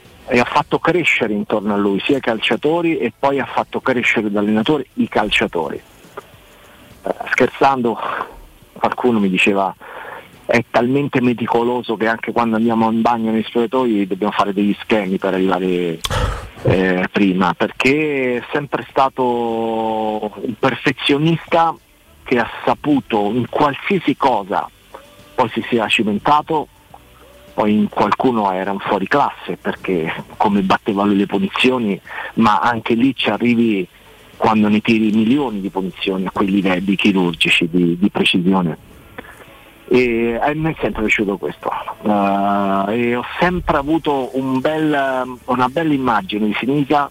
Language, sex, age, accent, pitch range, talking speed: Italian, male, 40-59, native, 100-135 Hz, 140 wpm